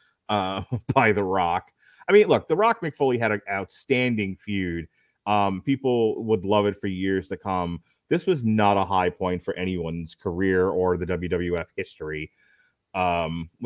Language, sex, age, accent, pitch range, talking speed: English, male, 30-49, American, 95-125 Hz, 165 wpm